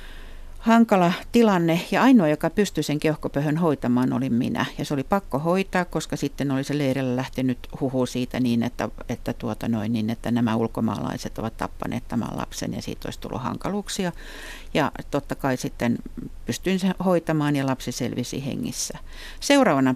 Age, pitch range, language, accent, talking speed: 60-79, 130-190 Hz, Finnish, native, 160 wpm